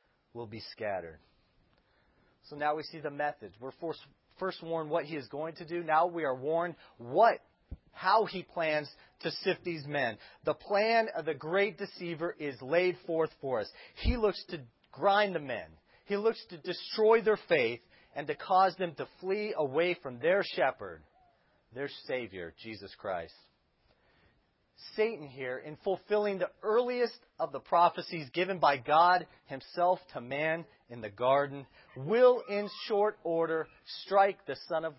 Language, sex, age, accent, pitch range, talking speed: English, male, 40-59, American, 140-185 Hz, 160 wpm